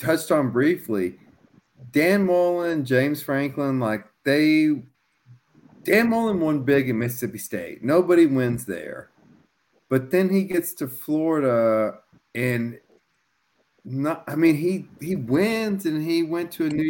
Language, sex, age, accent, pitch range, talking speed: English, male, 40-59, American, 120-170 Hz, 135 wpm